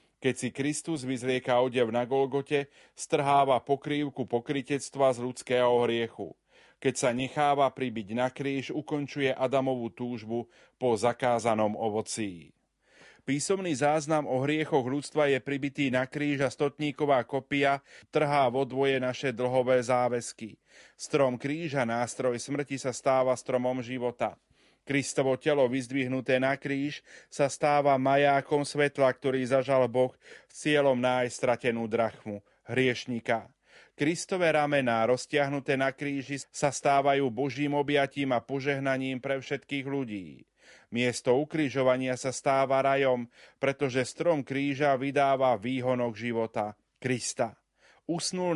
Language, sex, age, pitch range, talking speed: Slovak, male, 30-49, 125-145 Hz, 115 wpm